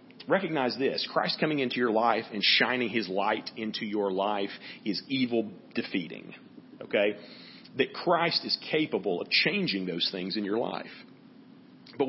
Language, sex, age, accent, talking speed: English, male, 40-59, American, 150 wpm